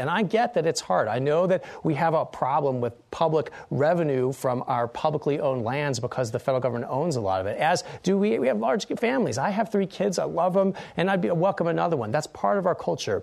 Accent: American